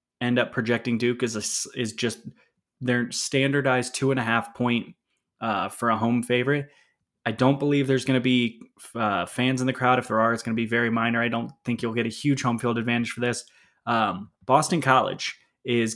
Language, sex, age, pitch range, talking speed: English, male, 20-39, 115-135 Hz, 205 wpm